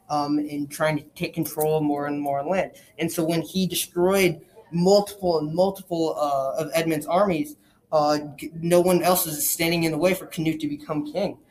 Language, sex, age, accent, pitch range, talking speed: English, male, 10-29, American, 150-185 Hz, 195 wpm